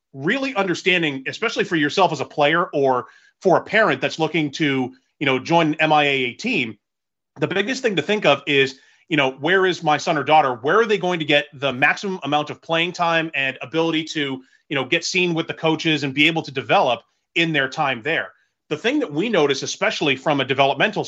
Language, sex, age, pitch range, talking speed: English, male, 30-49, 135-170 Hz, 215 wpm